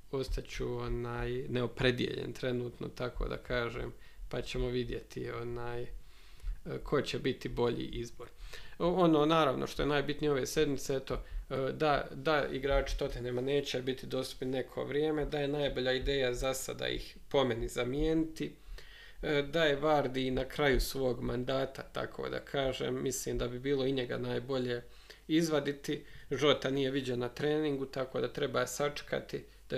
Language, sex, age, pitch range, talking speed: Croatian, male, 40-59, 125-145 Hz, 145 wpm